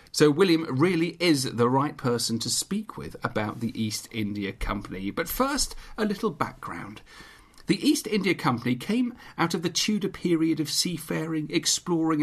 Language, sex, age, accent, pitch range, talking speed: English, male, 40-59, British, 125-170 Hz, 160 wpm